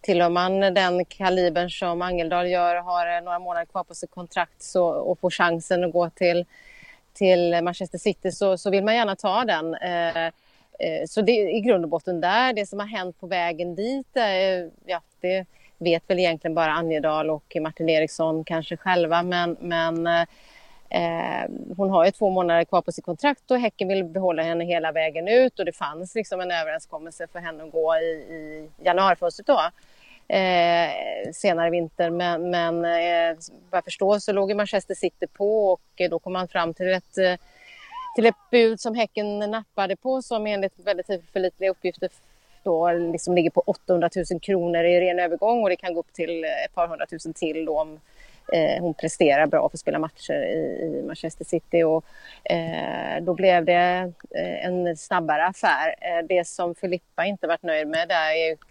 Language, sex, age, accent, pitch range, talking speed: Swedish, female, 30-49, native, 170-195 Hz, 185 wpm